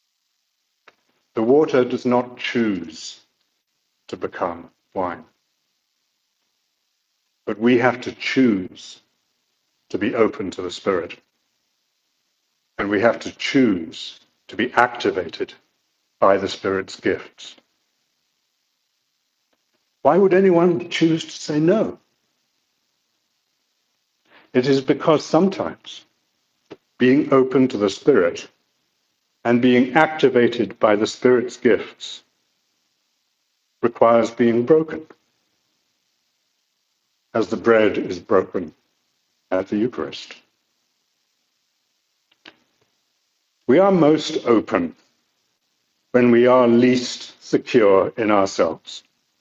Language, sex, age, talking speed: English, male, 60-79, 90 wpm